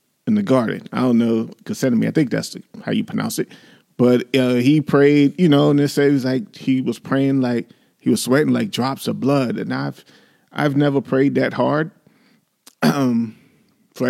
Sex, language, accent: male, English, American